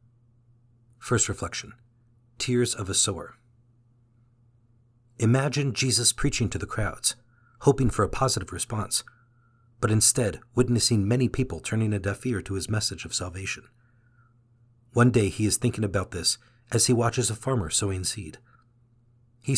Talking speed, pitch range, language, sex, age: 140 wpm, 105-120 Hz, English, male, 40-59